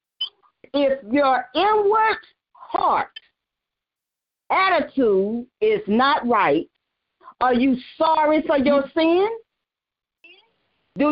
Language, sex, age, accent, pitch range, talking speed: English, female, 40-59, American, 270-380 Hz, 80 wpm